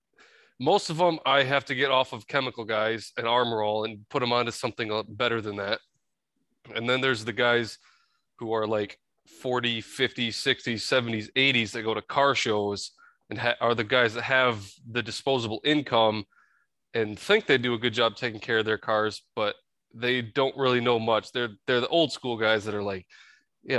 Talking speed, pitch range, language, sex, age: 195 wpm, 110-135 Hz, English, male, 20-39